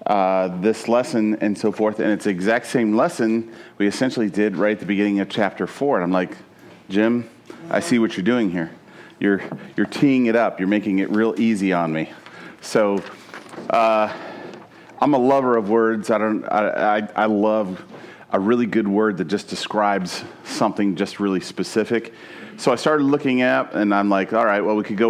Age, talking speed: 40-59, 195 wpm